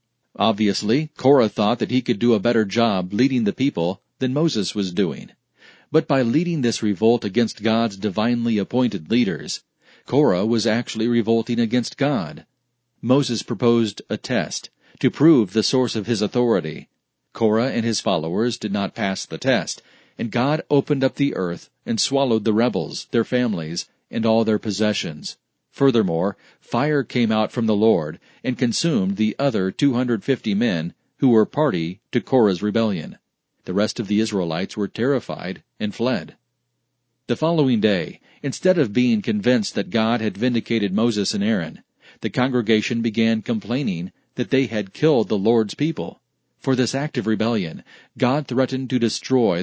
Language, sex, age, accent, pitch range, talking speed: English, male, 40-59, American, 110-130 Hz, 160 wpm